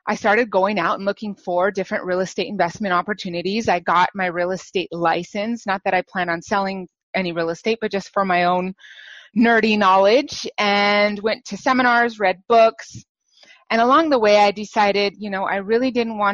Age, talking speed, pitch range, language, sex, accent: 30-49, 185 wpm, 185-220 Hz, English, female, American